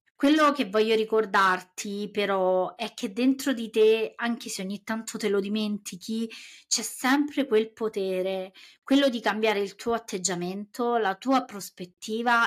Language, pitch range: Italian, 195-240 Hz